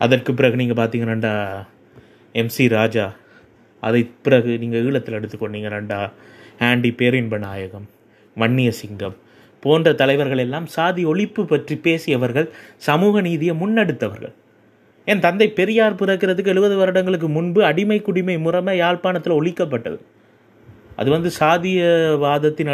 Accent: native